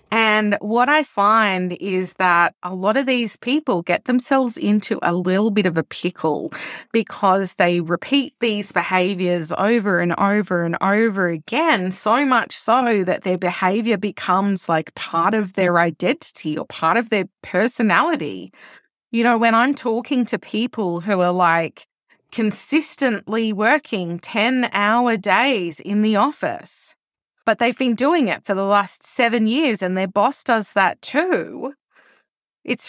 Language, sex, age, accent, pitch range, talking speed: English, female, 20-39, Australian, 180-235 Hz, 150 wpm